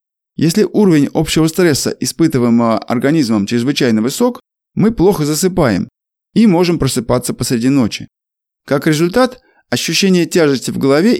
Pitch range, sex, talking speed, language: 130-185 Hz, male, 120 wpm, Russian